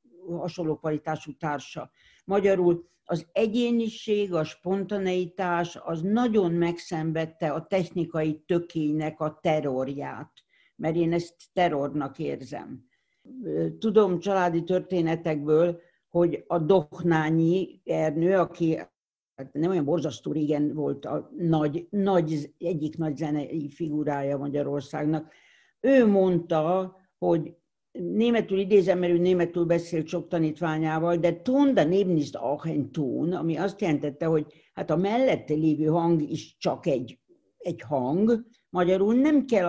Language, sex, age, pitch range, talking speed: Hungarian, female, 60-79, 155-185 Hz, 115 wpm